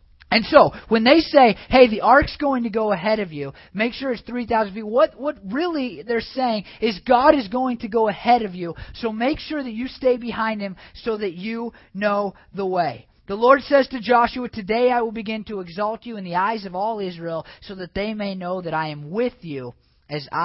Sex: male